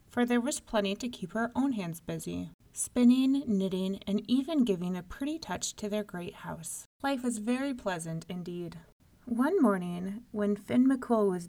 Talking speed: 170 wpm